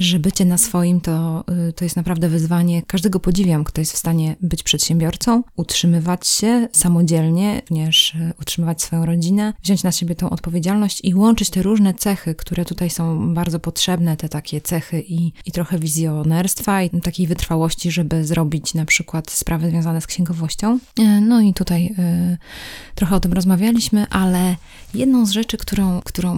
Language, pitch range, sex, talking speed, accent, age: Polish, 170-205 Hz, female, 160 wpm, native, 20-39